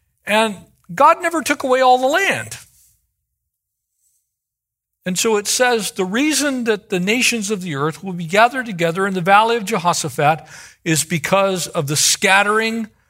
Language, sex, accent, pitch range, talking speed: English, male, American, 150-200 Hz, 155 wpm